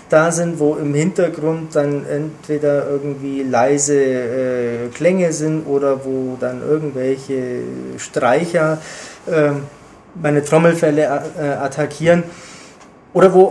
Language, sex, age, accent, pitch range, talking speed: German, male, 20-39, German, 145-175 Hz, 105 wpm